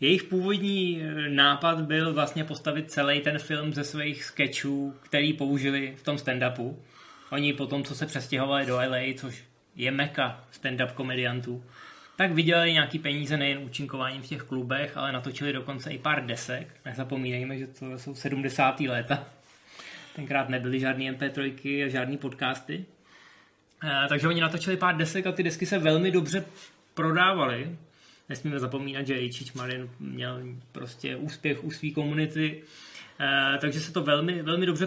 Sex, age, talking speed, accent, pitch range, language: male, 20-39, 150 wpm, native, 135-160 Hz, Czech